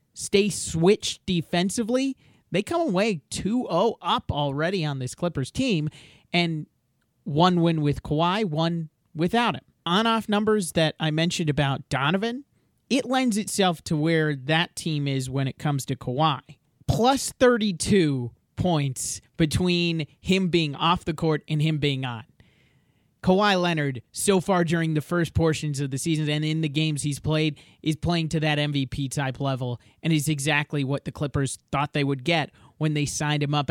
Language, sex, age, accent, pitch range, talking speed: English, male, 30-49, American, 140-175 Hz, 165 wpm